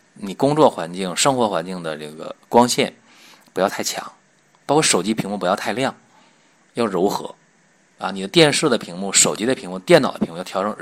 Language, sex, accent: Chinese, male, native